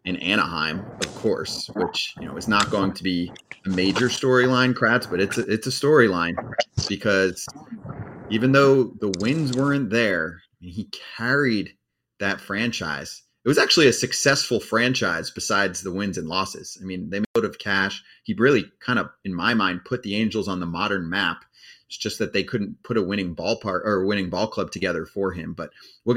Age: 30-49